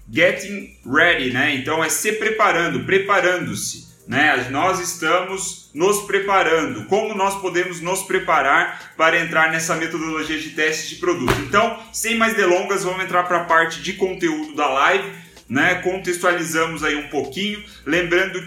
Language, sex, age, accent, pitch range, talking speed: Portuguese, male, 30-49, Brazilian, 160-195 Hz, 145 wpm